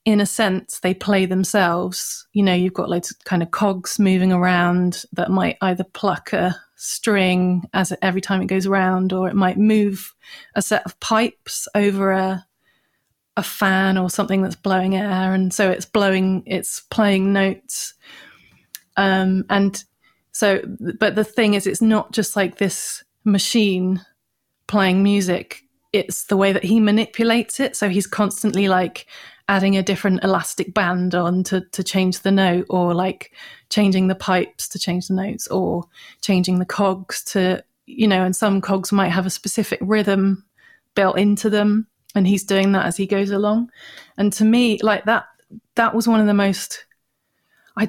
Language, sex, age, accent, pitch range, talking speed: English, female, 30-49, British, 190-215 Hz, 175 wpm